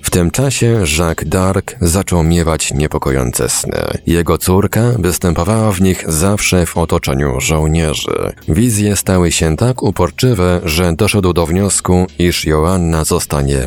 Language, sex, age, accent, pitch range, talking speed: Polish, male, 40-59, native, 80-100 Hz, 130 wpm